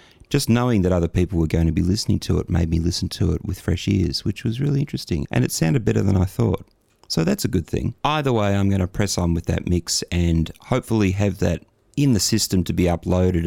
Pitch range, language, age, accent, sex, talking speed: 85-105 Hz, English, 30-49, Australian, male, 250 wpm